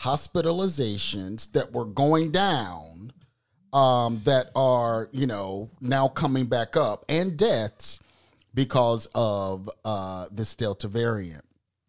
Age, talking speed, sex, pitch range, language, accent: 40-59, 110 wpm, male, 105-155 Hz, English, American